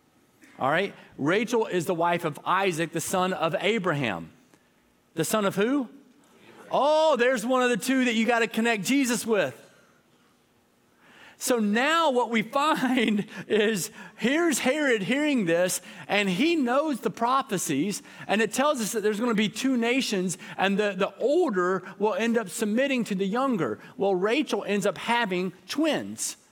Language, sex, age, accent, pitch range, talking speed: English, male, 40-59, American, 195-245 Hz, 165 wpm